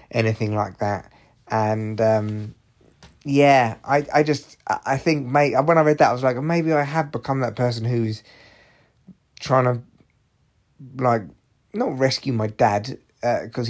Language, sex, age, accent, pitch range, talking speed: English, male, 30-49, British, 110-140 Hz, 150 wpm